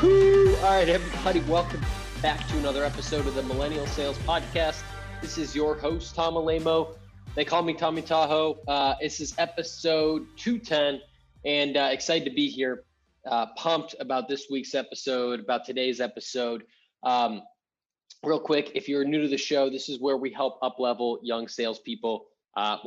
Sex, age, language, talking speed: male, 20-39, English, 165 wpm